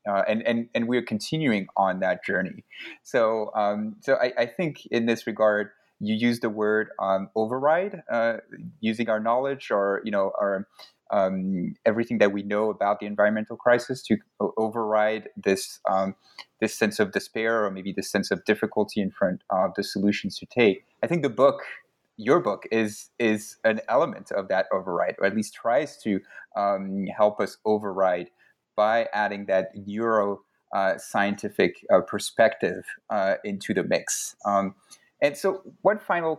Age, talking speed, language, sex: 30-49, 165 wpm, English, male